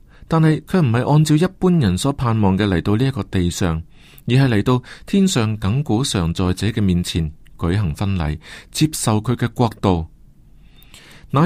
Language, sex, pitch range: Chinese, male, 100-145 Hz